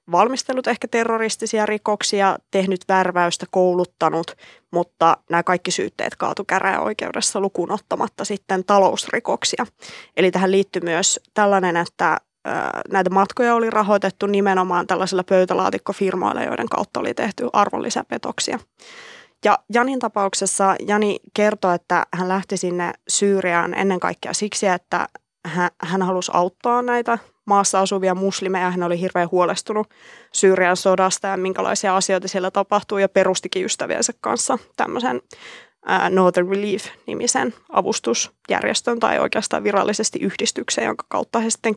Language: Finnish